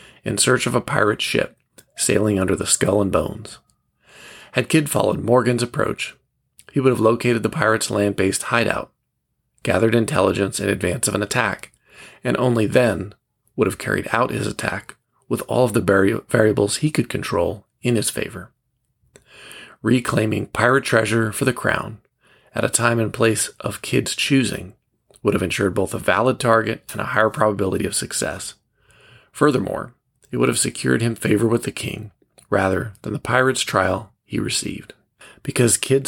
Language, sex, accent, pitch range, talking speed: English, male, American, 105-125 Hz, 165 wpm